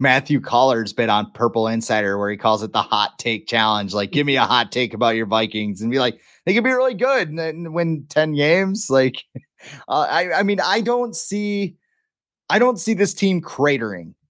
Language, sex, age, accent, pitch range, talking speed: English, male, 30-49, American, 125-175 Hz, 210 wpm